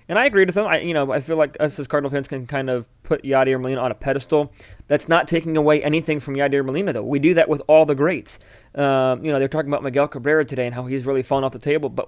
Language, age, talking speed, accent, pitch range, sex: English, 20-39, 290 wpm, American, 125-145 Hz, male